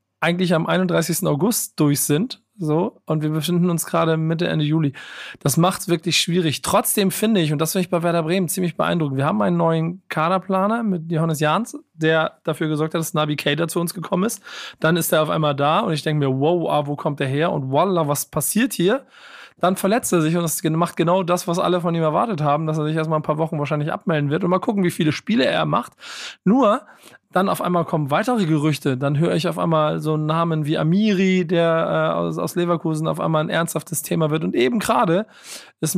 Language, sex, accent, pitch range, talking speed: German, male, German, 155-180 Hz, 230 wpm